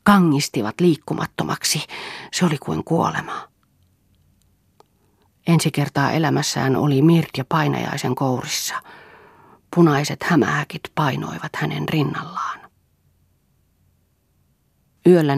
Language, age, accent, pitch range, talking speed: Finnish, 40-59, native, 120-160 Hz, 75 wpm